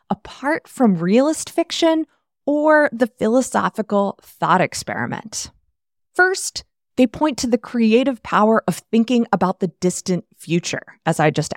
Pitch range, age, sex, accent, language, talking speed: 170-245 Hz, 20-39, female, American, English, 130 wpm